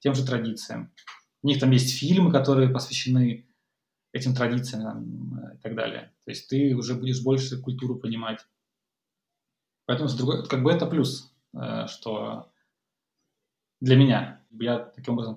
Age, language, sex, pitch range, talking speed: 20-39, Russian, male, 120-135 Hz, 140 wpm